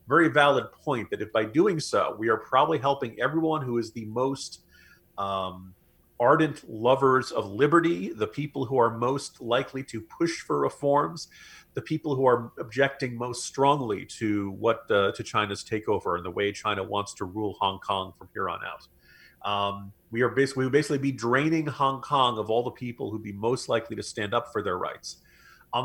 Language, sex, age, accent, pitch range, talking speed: English, male, 40-59, American, 115-145 Hz, 195 wpm